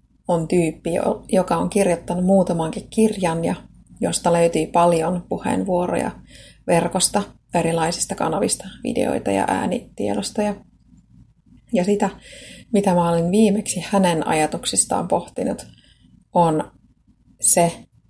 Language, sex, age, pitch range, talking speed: Finnish, female, 30-49, 165-195 Hz, 95 wpm